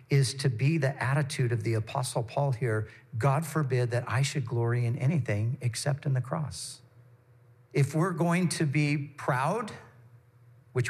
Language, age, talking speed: English, 50-69, 160 wpm